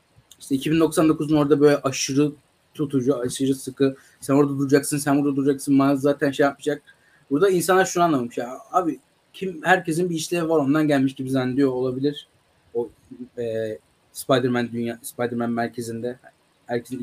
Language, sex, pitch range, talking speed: Turkish, male, 125-155 Hz, 140 wpm